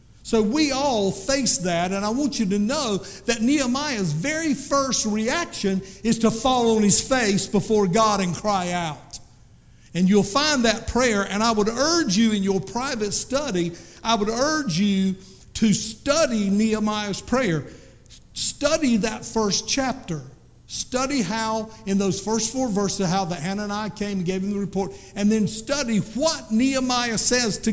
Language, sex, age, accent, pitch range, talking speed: English, male, 50-69, American, 175-230 Hz, 170 wpm